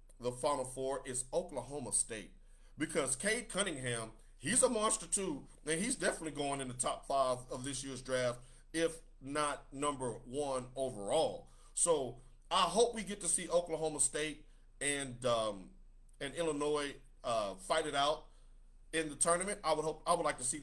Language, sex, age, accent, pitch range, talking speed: English, male, 40-59, American, 125-165 Hz, 170 wpm